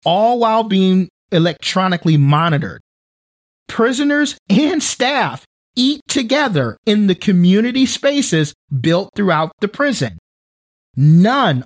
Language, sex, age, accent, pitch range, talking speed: English, male, 40-59, American, 150-210 Hz, 100 wpm